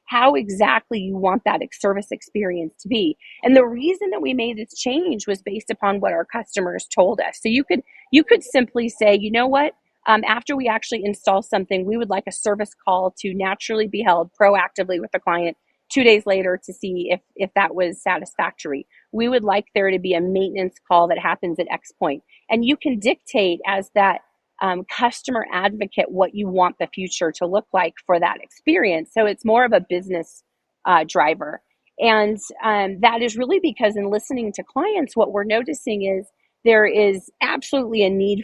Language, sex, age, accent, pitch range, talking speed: English, female, 30-49, American, 185-230 Hz, 200 wpm